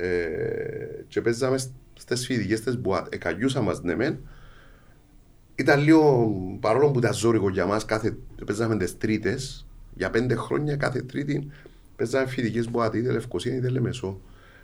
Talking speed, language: 130 wpm, Greek